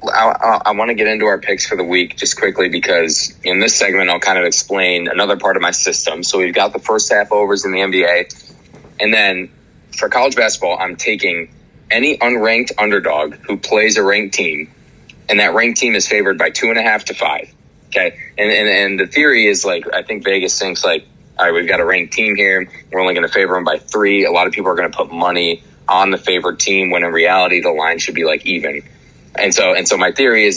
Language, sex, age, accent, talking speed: English, male, 20-39, American, 240 wpm